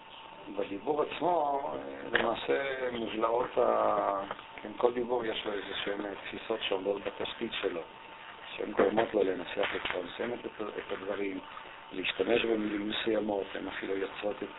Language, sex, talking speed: Hebrew, male, 130 wpm